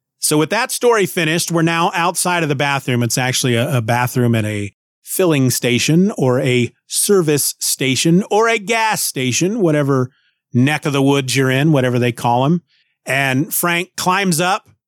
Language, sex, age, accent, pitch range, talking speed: English, male, 30-49, American, 125-165 Hz, 175 wpm